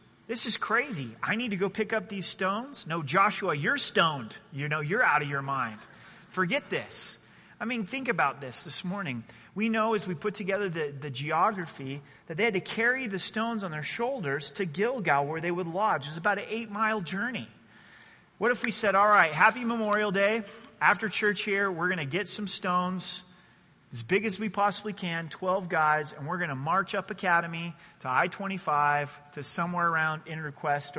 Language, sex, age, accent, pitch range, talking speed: English, male, 30-49, American, 145-210 Hz, 200 wpm